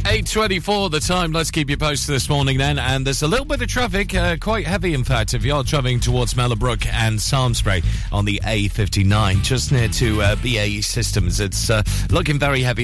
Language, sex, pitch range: English, male, 100-125 Hz